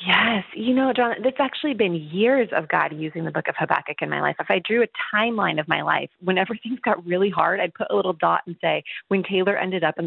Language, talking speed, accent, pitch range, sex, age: English, 255 wpm, American, 170-225 Hz, female, 30-49